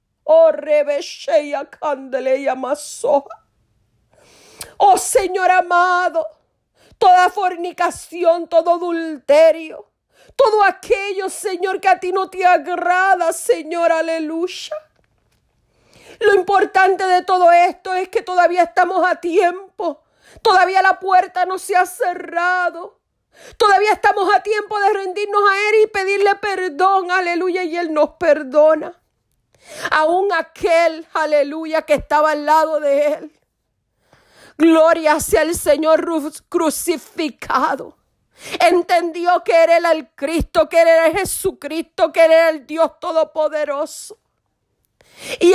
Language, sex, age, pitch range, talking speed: Spanish, female, 40-59, 320-375 Hz, 110 wpm